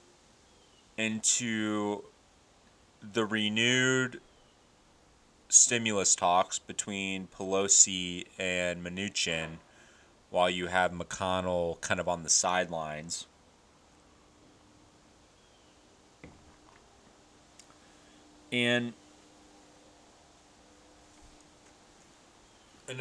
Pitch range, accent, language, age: 85-110 Hz, American, English, 30-49